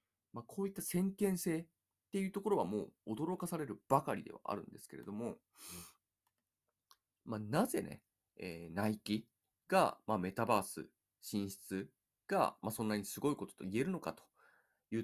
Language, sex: Japanese, male